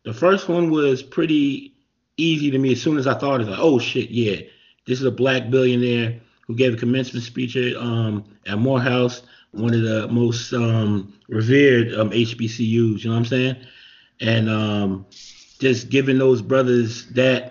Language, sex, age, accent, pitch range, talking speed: English, male, 30-49, American, 110-130 Hz, 185 wpm